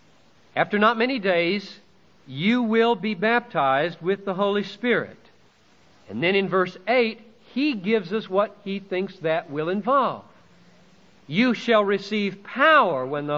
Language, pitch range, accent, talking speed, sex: Hindi, 140-205 Hz, American, 145 wpm, male